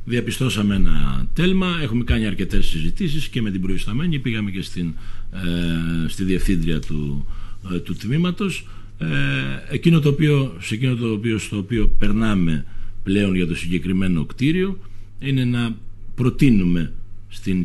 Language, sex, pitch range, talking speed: Greek, male, 95-135 Hz, 140 wpm